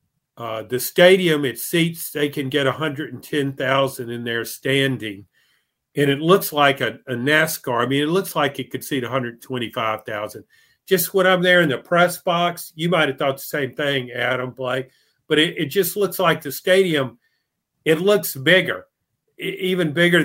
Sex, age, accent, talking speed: male, 50-69, American, 195 wpm